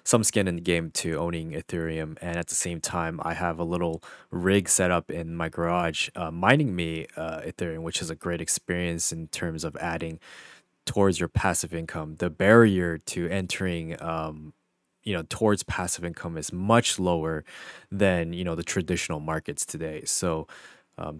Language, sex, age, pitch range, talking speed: English, male, 20-39, 85-95 Hz, 180 wpm